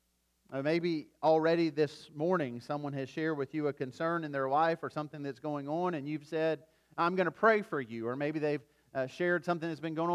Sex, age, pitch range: male, 40-59, 120-185 Hz